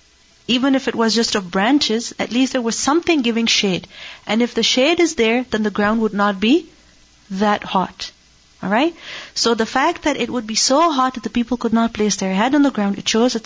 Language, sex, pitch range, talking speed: English, female, 180-230 Hz, 230 wpm